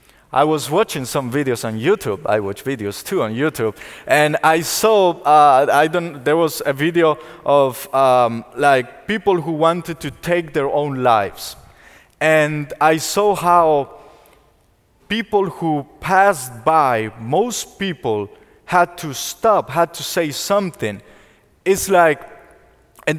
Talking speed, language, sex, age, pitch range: 140 wpm, English, male, 30-49, 135-175 Hz